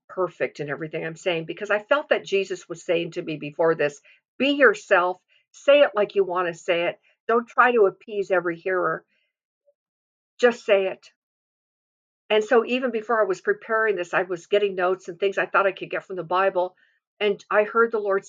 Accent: American